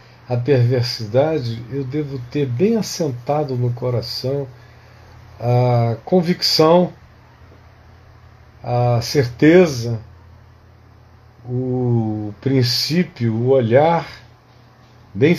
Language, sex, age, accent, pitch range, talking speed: Portuguese, male, 50-69, Brazilian, 115-165 Hz, 70 wpm